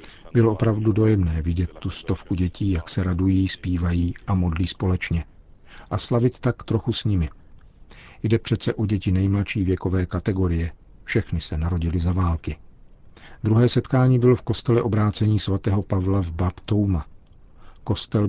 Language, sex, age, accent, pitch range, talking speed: Czech, male, 50-69, native, 85-105 Hz, 145 wpm